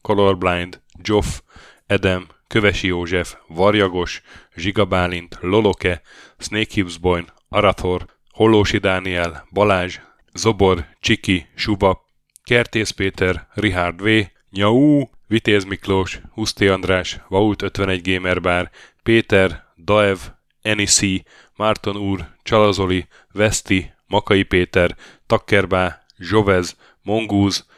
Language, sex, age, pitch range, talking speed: Hungarian, male, 10-29, 90-105 Hz, 90 wpm